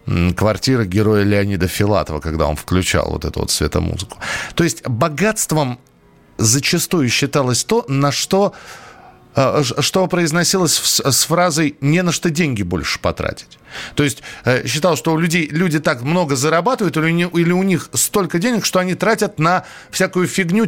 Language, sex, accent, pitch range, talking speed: Russian, male, native, 115-165 Hz, 145 wpm